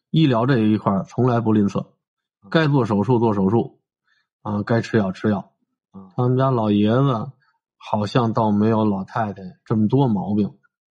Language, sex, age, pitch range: Chinese, male, 20-39, 100-125 Hz